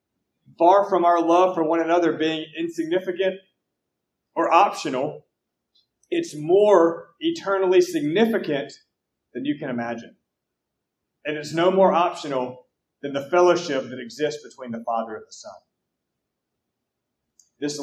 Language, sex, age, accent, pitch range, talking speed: English, male, 30-49, American, 140-185 Hz, 120 wpm